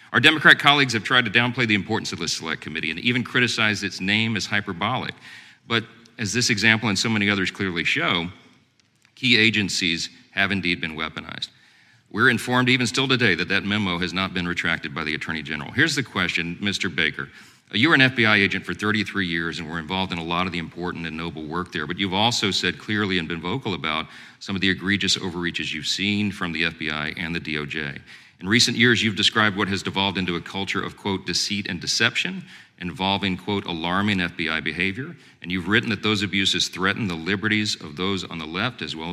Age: 40-59